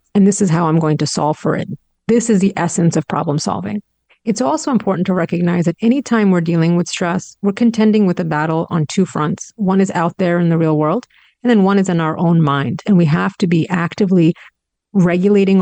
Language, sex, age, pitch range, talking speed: English, female, 30-49, 160-205 Hz, 225 wpm